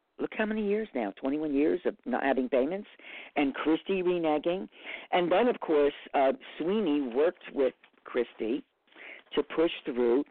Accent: American